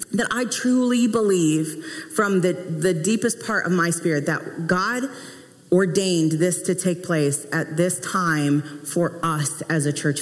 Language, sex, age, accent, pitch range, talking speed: English, female, 40-59, American, 170-205 Hz, 160 wpm